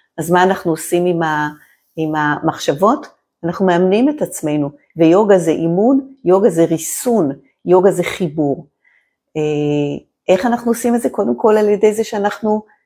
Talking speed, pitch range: 140 wpm, 165-225 Hz